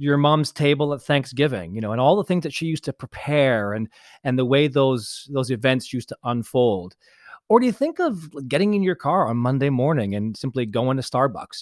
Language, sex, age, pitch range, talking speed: English, male, 40-59, 115-155 Hz, 220 wpm